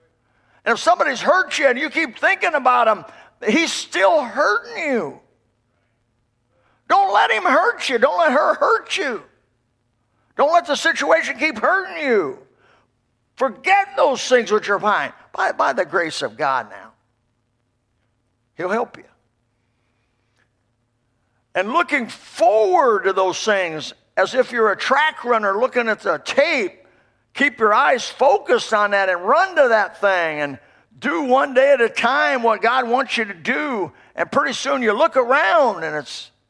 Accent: American